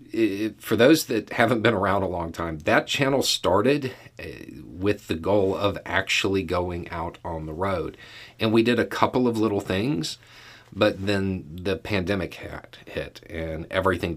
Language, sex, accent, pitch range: English, male, American, 85-110 Hz